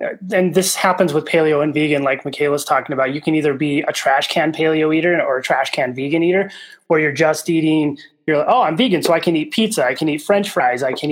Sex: male